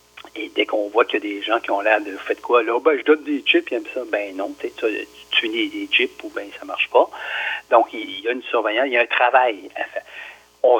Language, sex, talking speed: French, male, 290 wpm